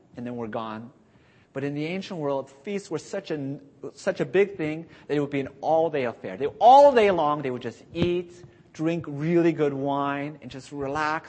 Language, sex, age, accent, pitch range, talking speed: English, male, 30-49, American, 120-170 Hz, 195 wpm